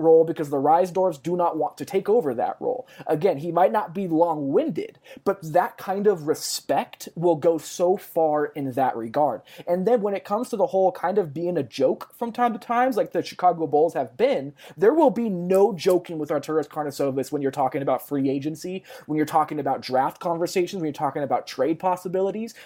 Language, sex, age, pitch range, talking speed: English, male, 20-39, 145-190 Hz, 210 wpm